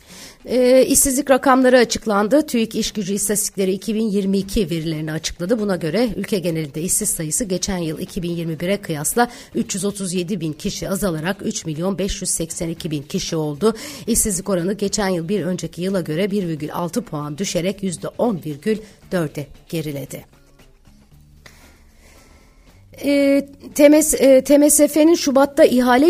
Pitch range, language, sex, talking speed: 180-245 Hz, Turkish, female, 115 wpm